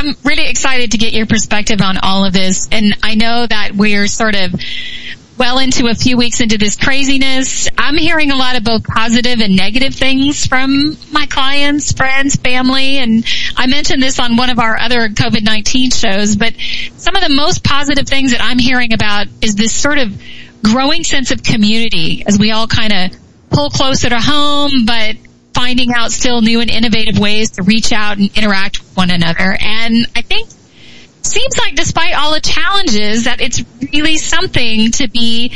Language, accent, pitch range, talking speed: English, American, 210-270 Hz, 185 wpm